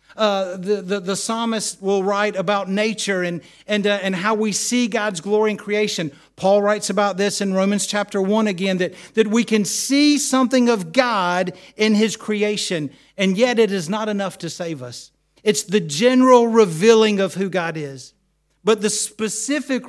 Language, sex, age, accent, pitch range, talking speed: English, male, 50-69, American, 155-215 Hz, 180 wpm